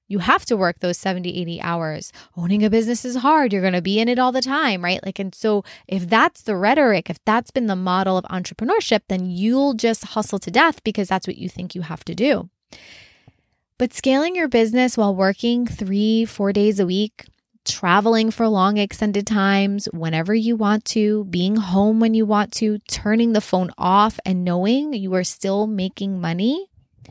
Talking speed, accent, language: 195 wpm, American, English